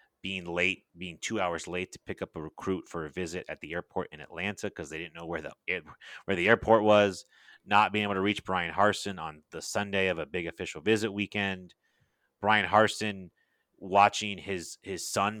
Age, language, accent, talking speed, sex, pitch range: 30-49, English, American, 200 wpm, male, 95-115 Hz